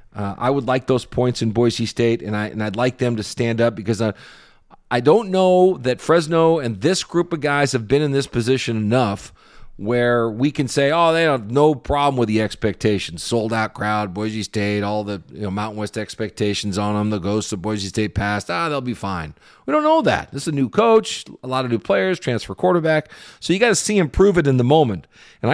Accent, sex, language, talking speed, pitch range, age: American, male, English, 235 wpm, 105-145 Hz, 40-59